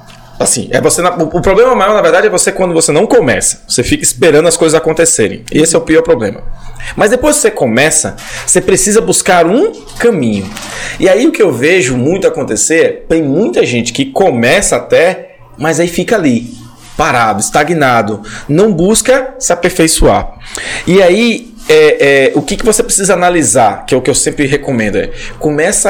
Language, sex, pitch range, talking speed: Portuguese, male, 150-230 Hz, 190 wpm